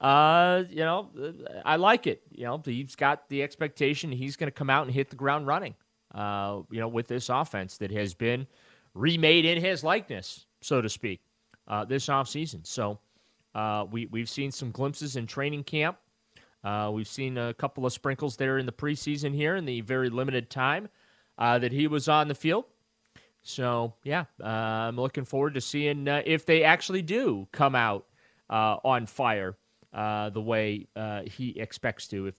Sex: male